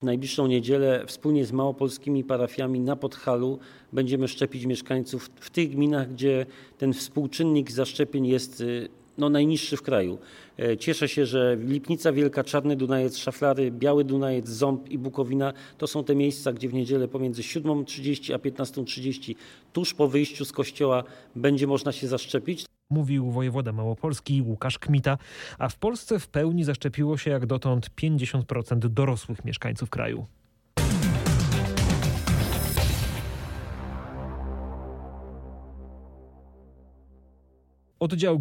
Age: 40-59